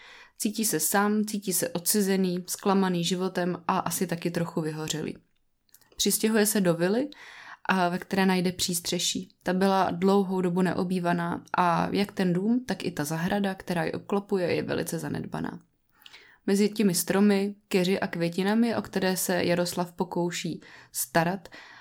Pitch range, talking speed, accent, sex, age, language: 175-205 Hz, 145 wpm, native, female, 20-39, Czech